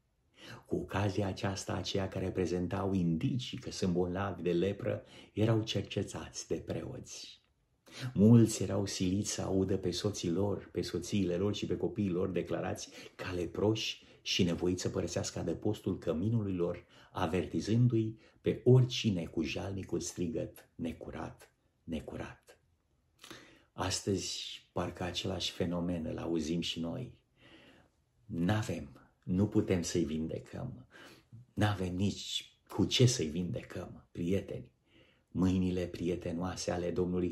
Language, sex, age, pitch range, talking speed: Romanian, male, 50-69, 90-105 Hz, 115 wpm